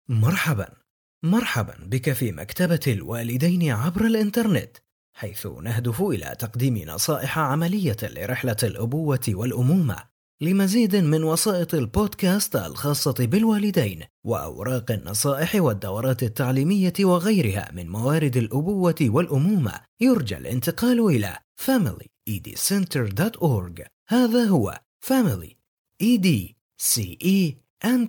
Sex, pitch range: male, 115-185 Hz